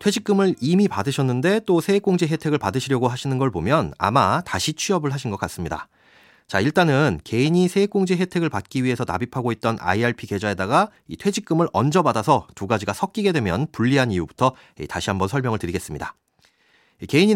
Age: 40-59